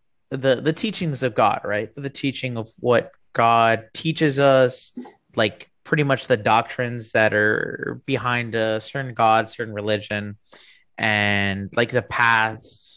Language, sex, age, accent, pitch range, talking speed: English, male, 20-39, American, 105-130 Hz, 140 wpm